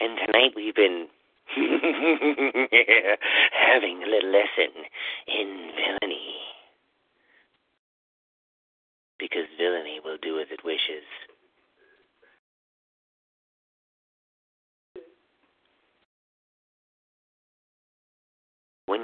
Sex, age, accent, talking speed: male, 40-59, American, 55 wpm